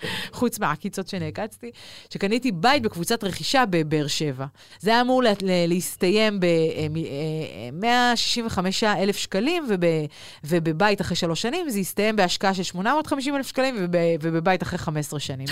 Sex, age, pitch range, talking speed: female, 30-49, 175-260 Hz, 120 wpm